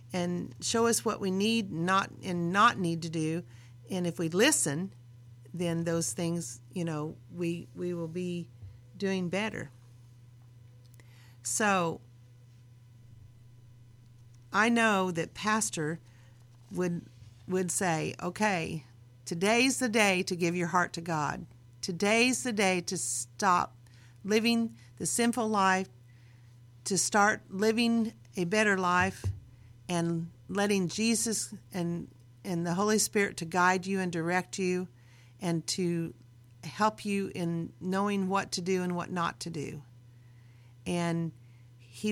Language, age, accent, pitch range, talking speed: English, 50-69, American, 120-200 Hz, 130 wpm